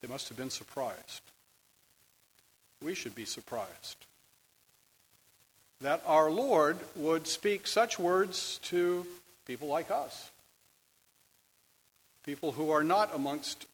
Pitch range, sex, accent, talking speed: 135-190 Hz, male, American, 110 wpm